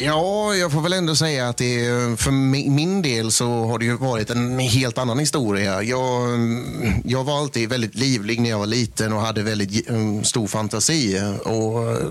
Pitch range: 105-130 Hz